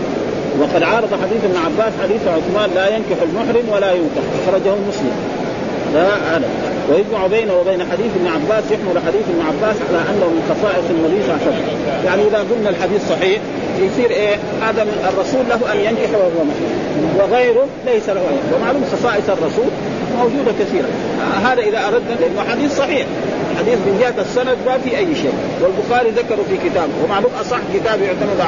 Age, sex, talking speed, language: 40-59, male, 160 wpm, Arabic